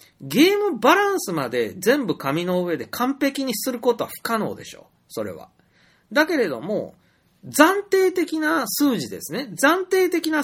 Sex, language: male, Japanese